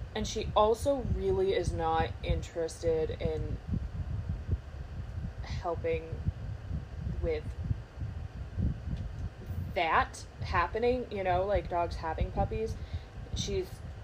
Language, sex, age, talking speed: English, female, 20-39, 80 wpm